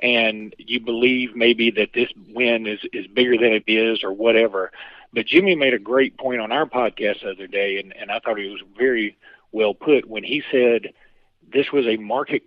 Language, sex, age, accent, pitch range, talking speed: English, male, 50-69, American, 115-145 Hz, 205 wpm